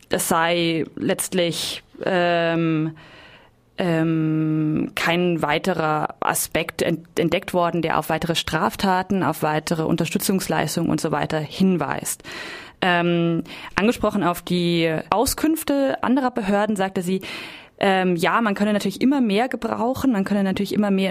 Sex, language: female, German